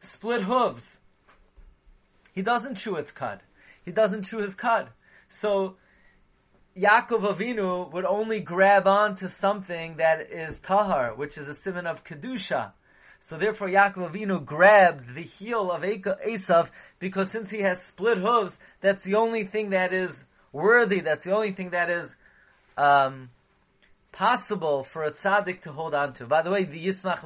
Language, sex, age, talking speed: English, male, 30-49, 160 wpm